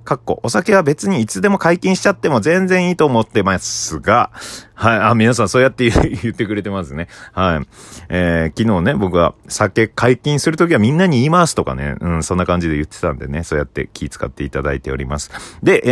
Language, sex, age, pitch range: Japanese, male, 30-49, 85-130 Hz